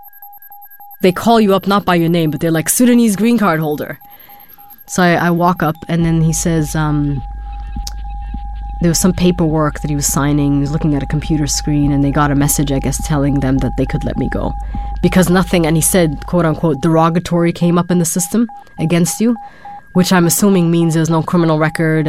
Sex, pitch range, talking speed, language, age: female, 150-190 Hz, 210 wpm, English, 20-39